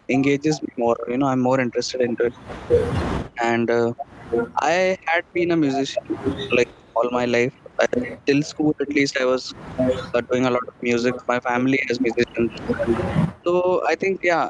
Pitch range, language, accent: 120-150 Hz, English, Indian